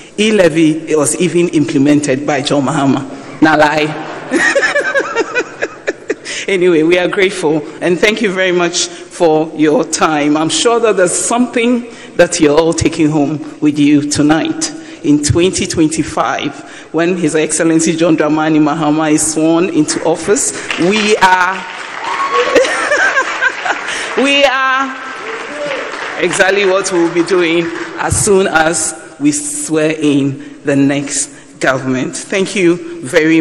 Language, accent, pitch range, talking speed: English, Nigerian, 155-215 Hz, 120 wpm